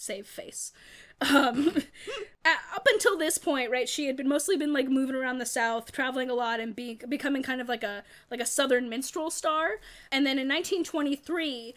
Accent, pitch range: American, 235-290 Hz